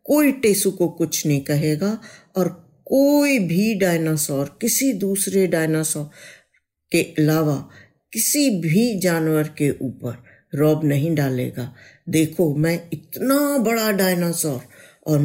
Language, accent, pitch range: Hindi, native, 150-225 Hz